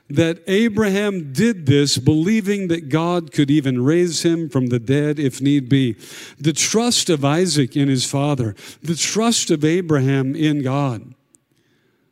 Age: 50-69